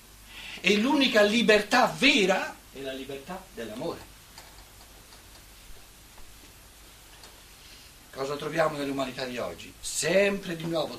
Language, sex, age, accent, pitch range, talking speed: Italian, male, 60-79, native, 120-205 Hz, 85 wpm